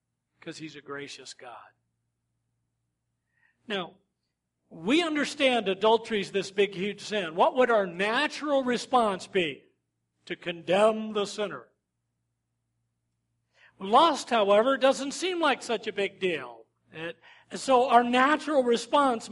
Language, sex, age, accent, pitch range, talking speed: English, male, 50-69, American, 170-250 Hz, 120 wpm